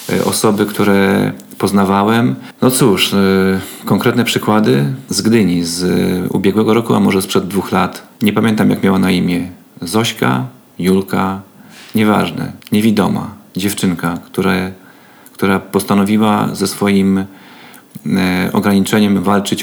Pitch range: 95-105 Hz